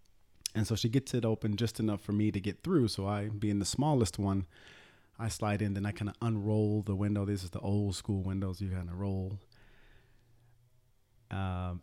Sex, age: male, 30-49